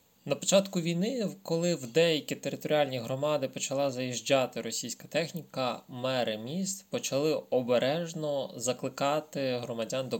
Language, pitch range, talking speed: Ukrainian, 120-155 Hz, 110 wpm